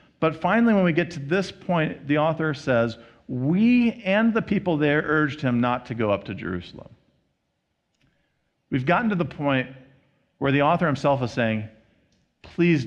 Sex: male